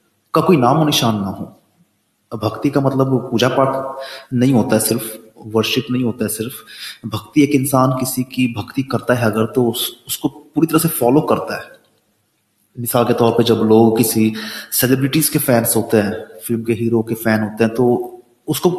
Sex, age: male, 30-49